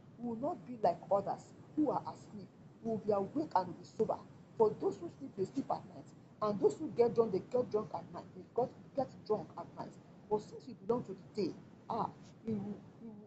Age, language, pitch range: 40-59, English, 200-260 Hz